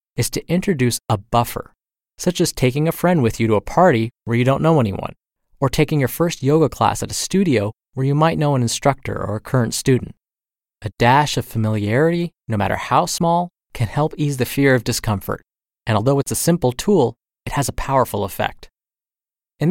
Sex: male